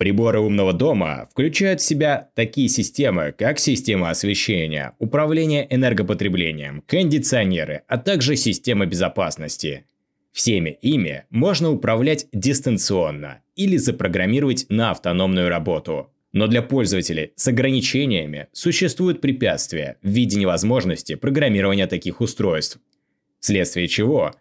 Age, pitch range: 20-39, 95-140 Hz